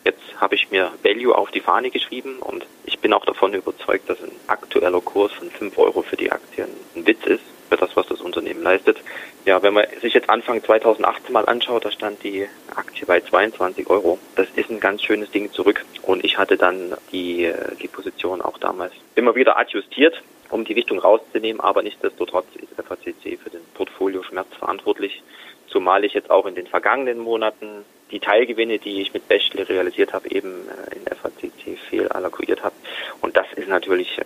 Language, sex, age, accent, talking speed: German, male, 30-49, German, 185 wpm